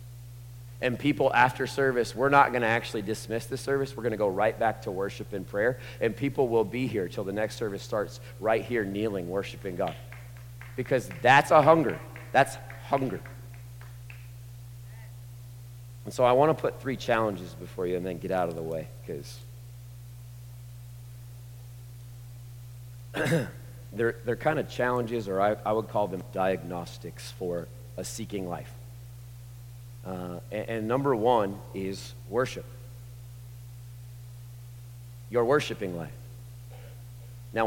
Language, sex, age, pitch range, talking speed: English, male, 40-59, 120-140 Hz, 140 wpm